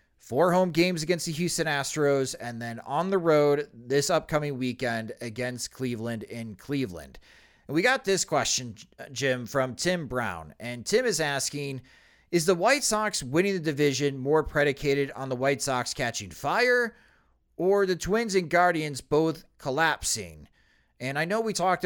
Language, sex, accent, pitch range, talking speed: English, male, American, 125-170 Hz, 160 wpm